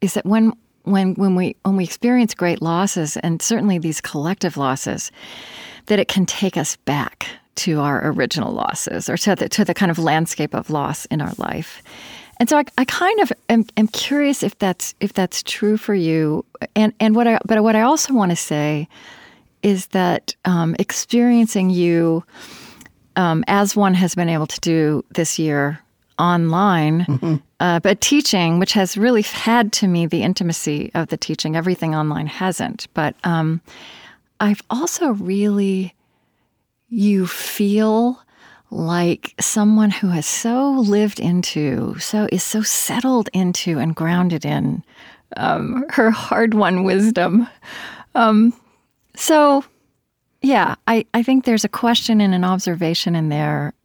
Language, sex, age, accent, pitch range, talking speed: English, female, 40-59, American, 165-220 Hz, 155 wpm